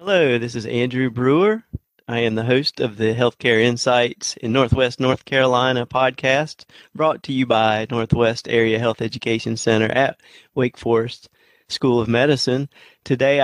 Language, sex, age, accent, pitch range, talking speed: English, male, 40-59, American, 115-140 Hz, 150 wpm